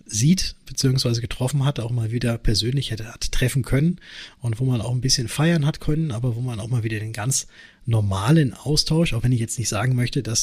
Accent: German